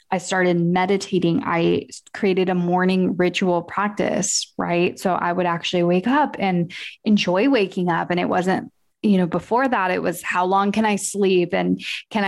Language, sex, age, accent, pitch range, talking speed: English, female, 20-39, American, 180-215 Hz, 175 wpm